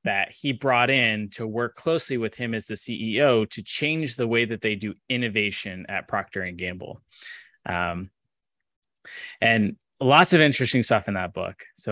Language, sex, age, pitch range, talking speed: English, male, 20-39, 100-125 Hz, 170 wpm